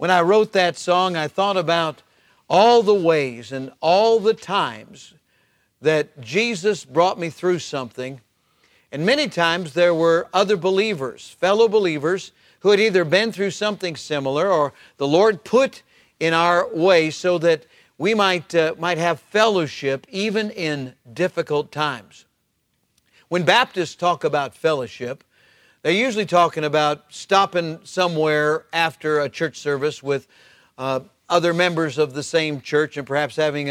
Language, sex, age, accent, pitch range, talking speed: English, male, 50-69, American, 145-185 Hz, 145 wpm